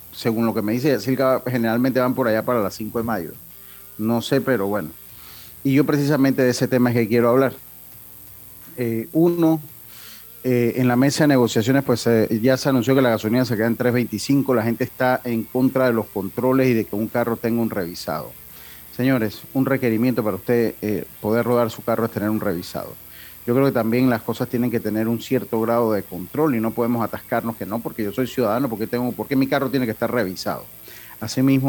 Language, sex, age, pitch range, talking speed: Spanish, male, 30-49, 110-130 Hz, 215 wpm